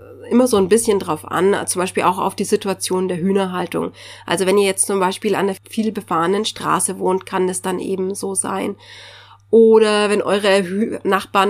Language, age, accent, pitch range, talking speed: German, 30-49, German, 180-205 Hz, 190 wpm